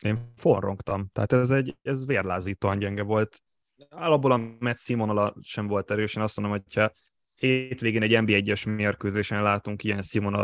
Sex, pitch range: male, 100-125 Hz